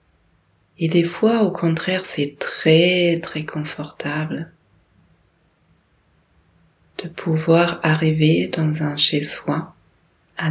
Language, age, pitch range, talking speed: French, 30-49, 150-180 Hz, 90 wpm